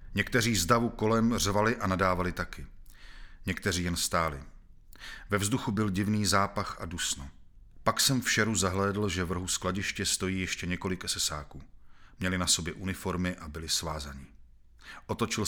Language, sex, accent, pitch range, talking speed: Czech, male, native, 80-105 Hz, 150 wpm